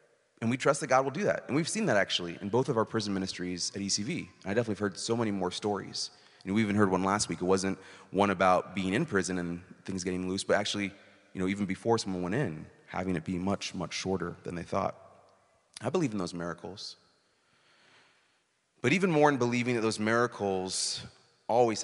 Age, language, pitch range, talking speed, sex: 30-49, English, 90-105 Hz, 215 wpm, male